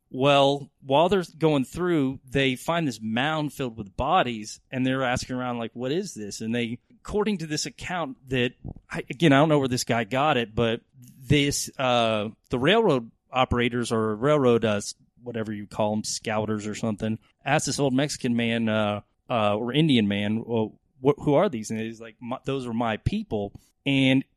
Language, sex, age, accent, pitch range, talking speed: English, male, 30-49, American, 115-135 Hz, 180 wpm